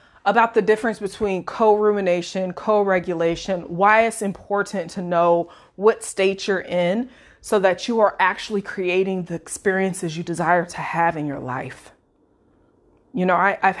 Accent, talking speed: American, 145 wpm